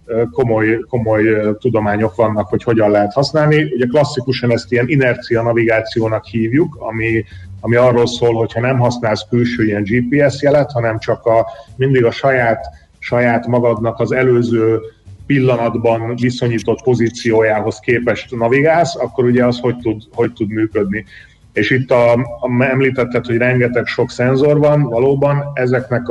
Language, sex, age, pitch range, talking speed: Hungarian, male, 30-49, 110-125 Hz, 140 wpm